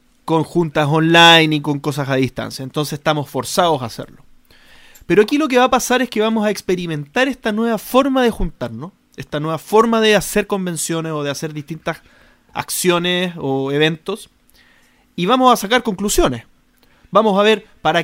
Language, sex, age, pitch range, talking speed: Spanish, male, 30-49, 155-225 Hz, 175 wpm